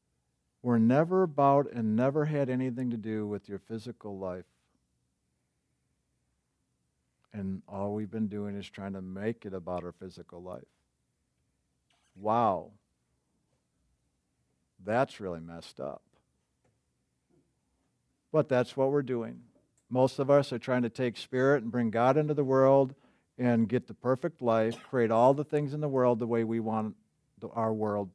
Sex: male